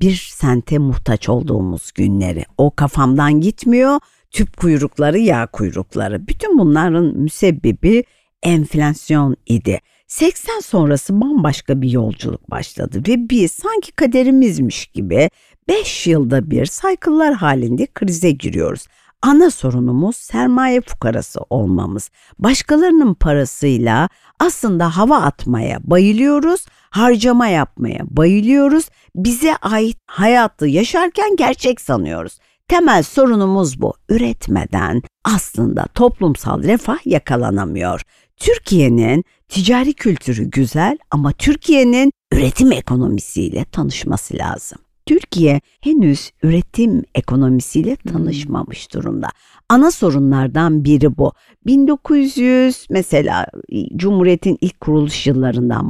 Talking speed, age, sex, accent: 95 wpm, 60-79, female, native